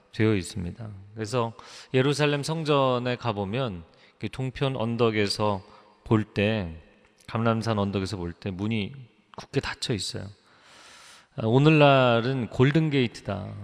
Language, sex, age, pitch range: Korean, male, 30-49, 100-125 Hz